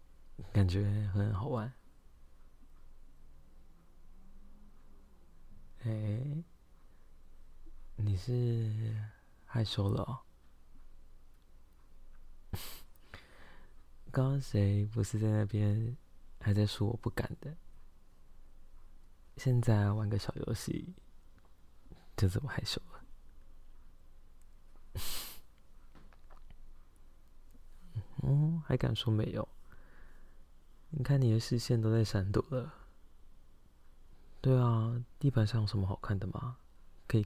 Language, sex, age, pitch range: Chinese, male, 20-39, 70-110 Hz